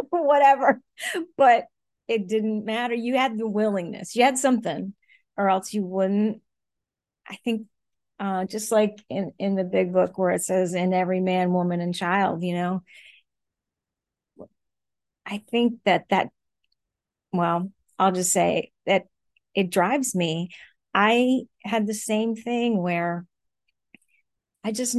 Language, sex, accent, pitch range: English, female, American, 180-220 Hz